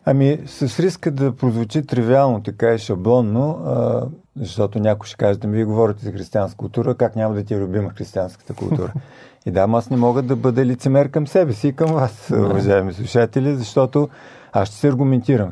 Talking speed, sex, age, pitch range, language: 195 wpm, male, 50-69, 115-140 Hz, Bulgarian